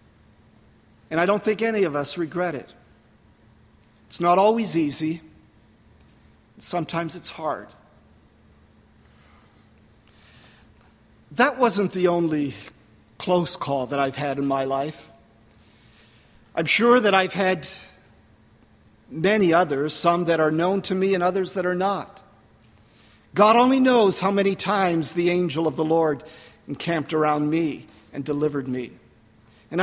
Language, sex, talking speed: English, male, 130 wpm